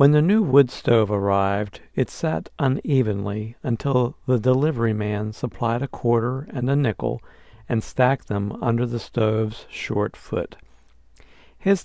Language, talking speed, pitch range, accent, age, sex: English, 140 wpm, 105-130 Hz, American, 60-79, male